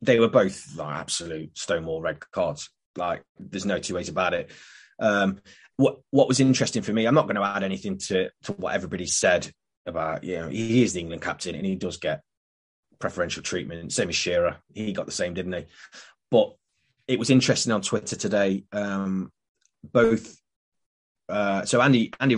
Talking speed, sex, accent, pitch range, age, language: 185 wpm, male, British, 90-105 Hz, 20-39, English